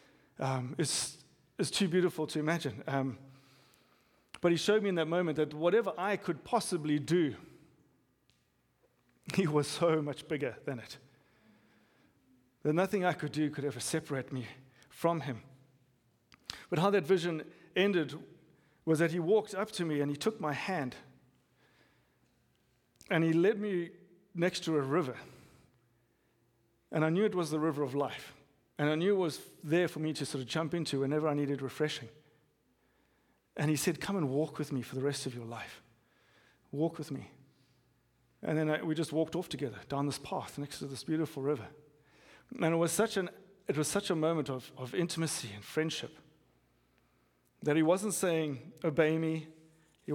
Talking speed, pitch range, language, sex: 175 wpm, 140-170 Hz, English, male